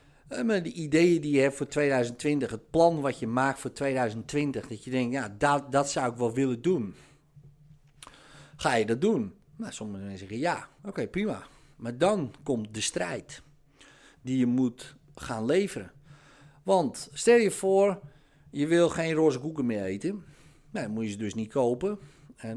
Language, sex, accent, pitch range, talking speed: Dutch, male, Dutch, 110-145 Hz, 180 wpm